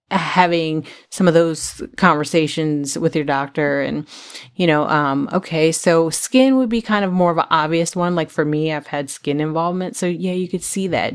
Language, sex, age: English, female, 30-49